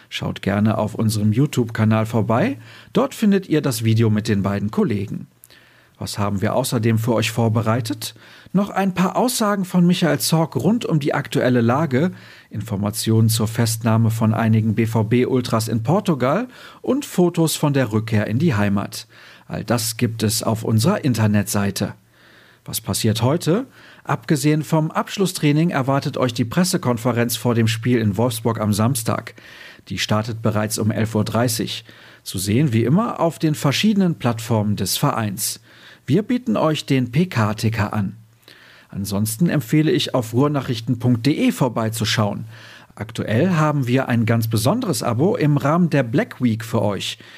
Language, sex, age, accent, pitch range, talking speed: German, male, 50-69, German, 110-150 Hz, 145 wpm